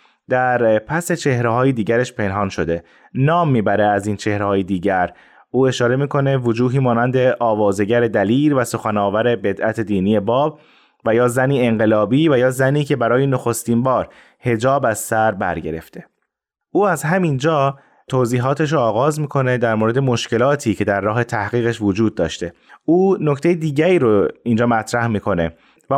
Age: 20-39